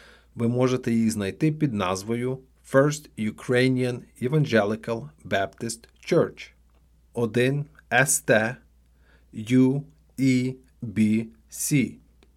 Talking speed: 80 wpm